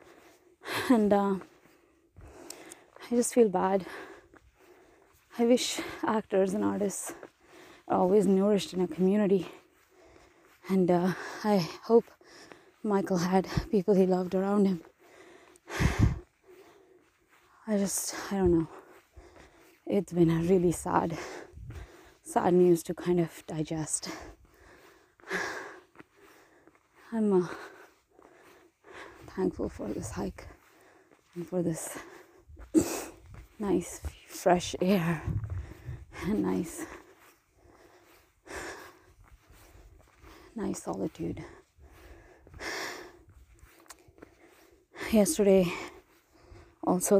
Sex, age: female, 20-39